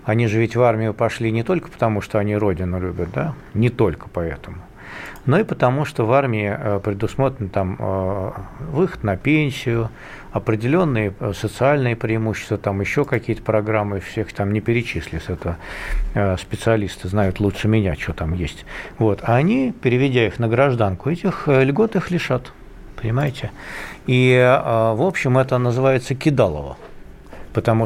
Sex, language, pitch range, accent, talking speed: male, Russian, 105-135 Hz, native, 140 wpm